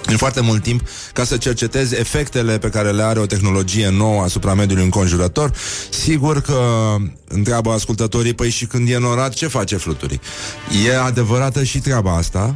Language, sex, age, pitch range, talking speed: Romanian, male, 30-49, 100-125 Hz, 165 wpm